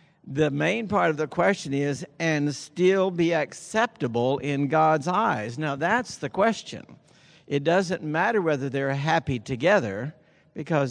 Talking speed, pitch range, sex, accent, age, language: 145 wpm, 130-155 Hz, male, American, 60-79, English